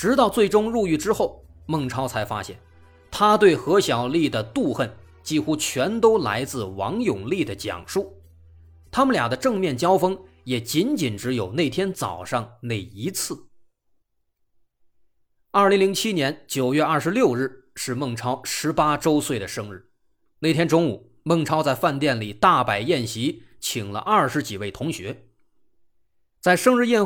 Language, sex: Chinese, male